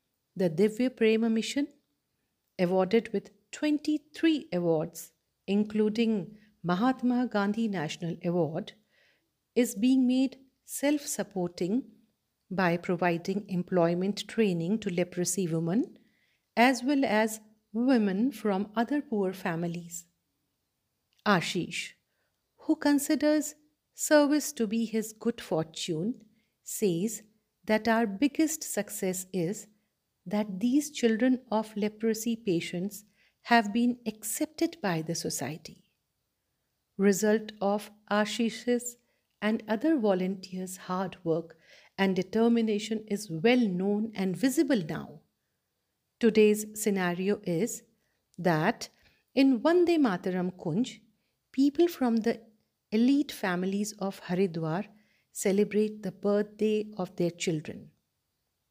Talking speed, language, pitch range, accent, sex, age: 100 wpm, Hindi, 185-235 Hz, native, female, 50-69